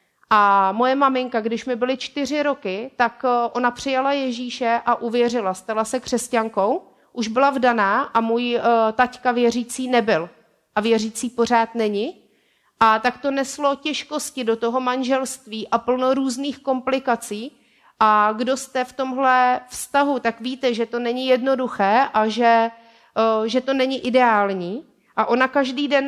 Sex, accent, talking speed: female, native, 145 wpm